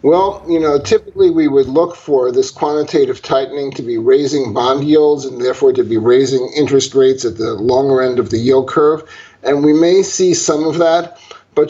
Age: 50-69